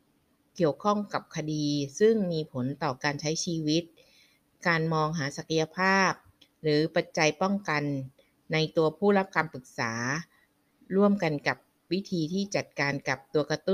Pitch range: 145-185 Hz